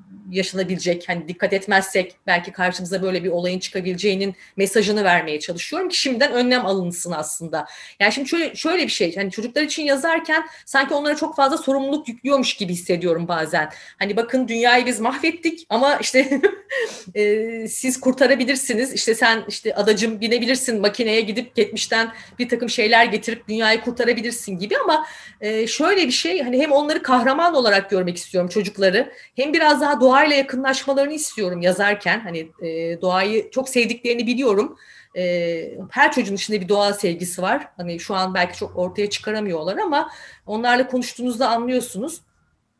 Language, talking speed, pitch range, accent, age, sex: Turkish, 150 wpm, 195-275 Hz, native, 30-49, female